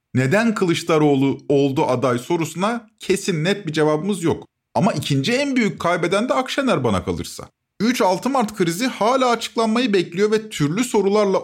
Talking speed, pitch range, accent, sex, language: 145 wpm, 150-215 Hz, native, male, Turkish